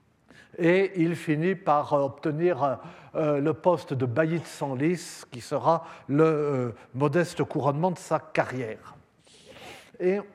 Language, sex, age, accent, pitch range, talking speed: French, male, 50-69, French, 155-190 Hz, 115 wpm